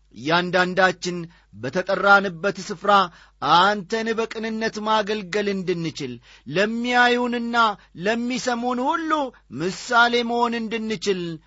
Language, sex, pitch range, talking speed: Amharic, male, 175-215 Hz, 70 wpm